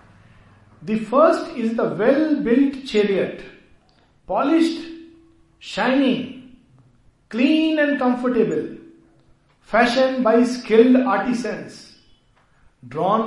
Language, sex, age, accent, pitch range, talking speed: Hindi, male, 50-69, native, 150-220 Hz, 75 wpm